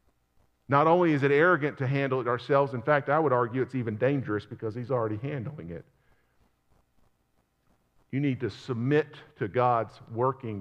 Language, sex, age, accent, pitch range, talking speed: English, male, 50-69, American, 100-135 Hz, 165 wpm